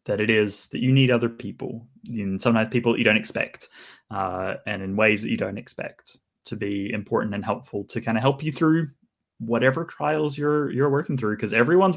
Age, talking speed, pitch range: 20-39, 210 wpm, 105-135 Hz